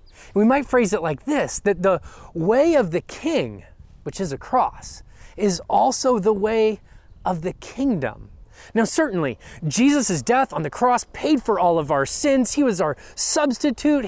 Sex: male